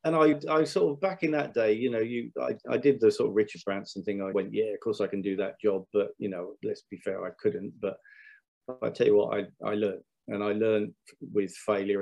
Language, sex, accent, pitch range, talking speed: English, male, British, 105-150 Hz, 260 wpm